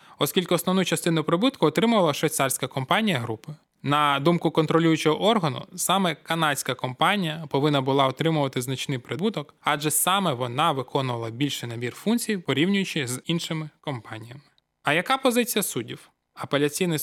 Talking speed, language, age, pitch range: 125 wpm, Ukrainian, 20-39, 130-175 Hz